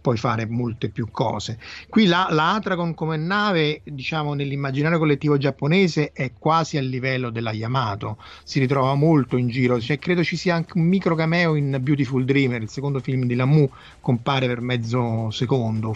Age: 30-49